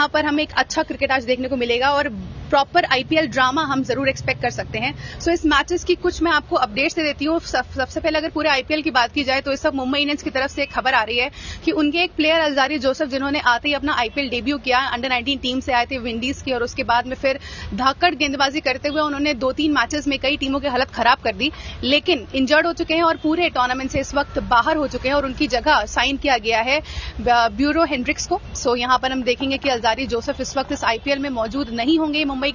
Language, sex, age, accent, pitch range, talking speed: English, female, 30-49, Indian, 255-300 Hz, 130 wpm